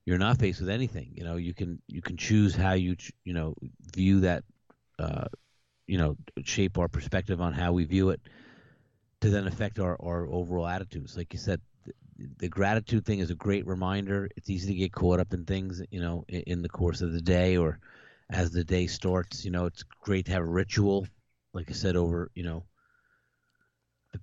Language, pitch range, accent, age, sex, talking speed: English, 85-100 Hz, American, 30-49, male, 210 wpm